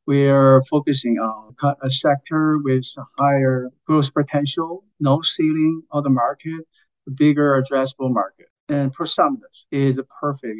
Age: 50-69